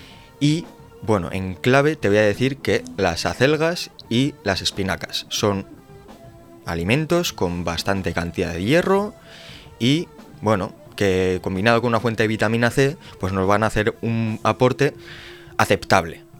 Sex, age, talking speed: male, 20-39, 145 wpm